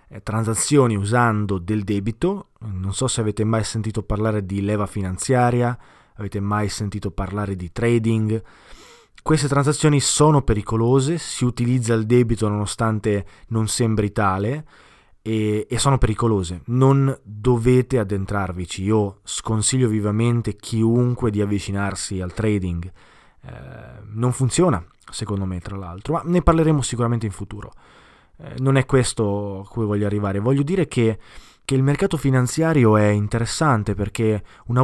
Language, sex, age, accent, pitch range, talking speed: Italian, male, 20-39, native, 105-130 Hz, 135 wpm